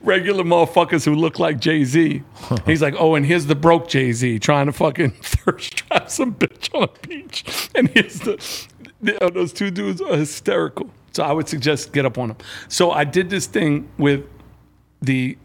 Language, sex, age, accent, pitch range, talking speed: English, male, 50-69, American, 120-155 Hz, 180 wpm